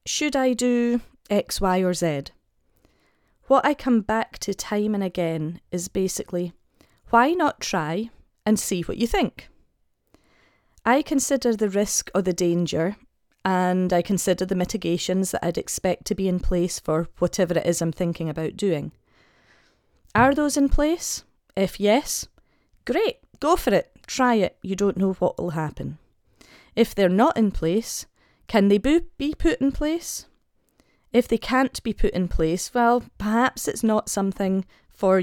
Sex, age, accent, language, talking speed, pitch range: female, 30-49, British, English, 160 wpm, 175-235 Hz